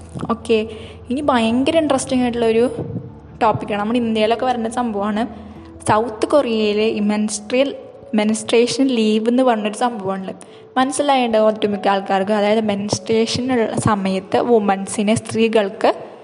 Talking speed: 100 wpm